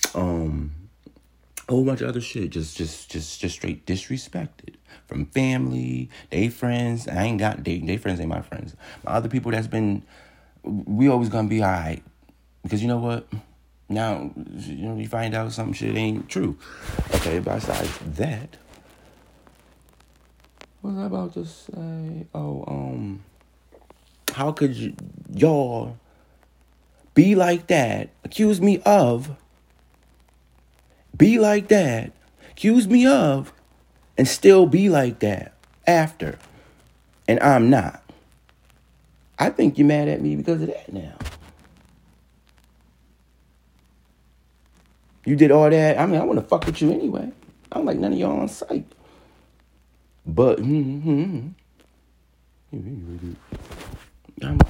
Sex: male